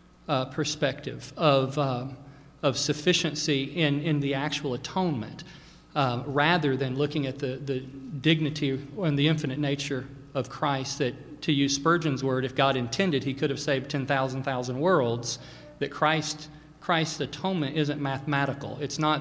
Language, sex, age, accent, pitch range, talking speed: English, male, 40-59, American, 135-155 Hz, 165 wpm